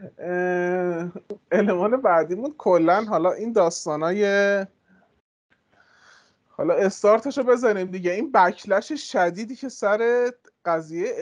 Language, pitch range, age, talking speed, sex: Persian, 145-200 Hz, 20-39, 95 wpm, male